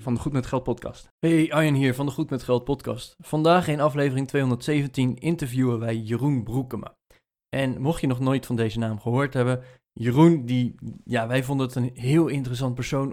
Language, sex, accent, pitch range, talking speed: Dutch, male, Dutch, 125-155 Hz, 195 wpm